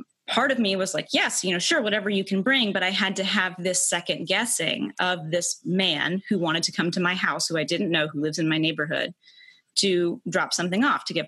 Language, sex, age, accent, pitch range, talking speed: English, female, 20-39, American, 165-215 Hz, 245 wpm